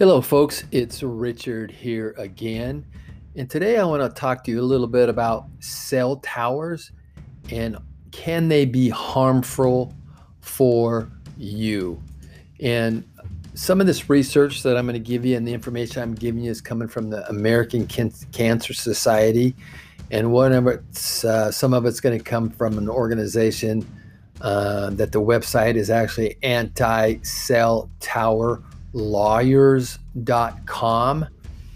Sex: male